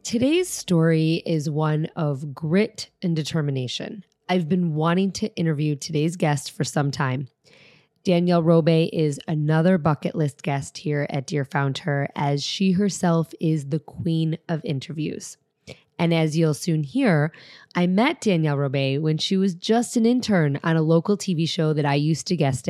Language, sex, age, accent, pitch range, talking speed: English, female, 20-39, American, 150-185 Hz, 165 wpm